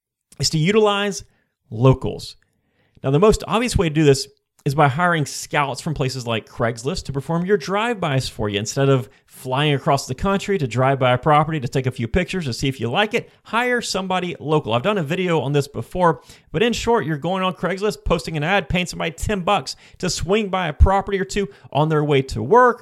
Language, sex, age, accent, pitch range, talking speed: English, male, 30-49, American, 130-190 Hz, 220 wpm